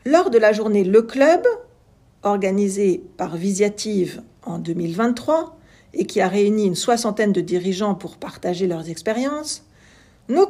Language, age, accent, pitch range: French, 50-69, French, 190-255 Hz